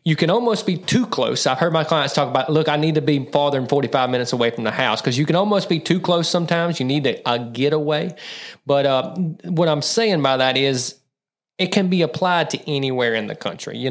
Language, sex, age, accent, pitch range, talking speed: English, male, 30-49, American, 130-155 Hz, 240 wpm